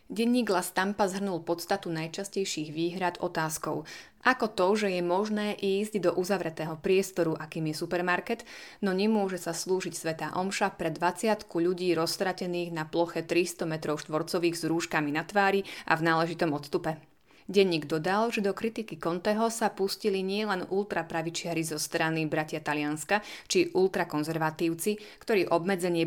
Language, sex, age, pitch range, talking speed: Slovak, female, 20-39, 165-195 Hz, 140 wpm